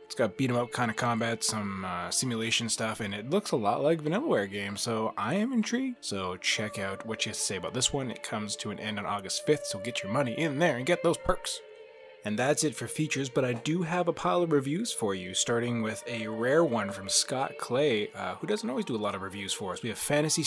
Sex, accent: male, American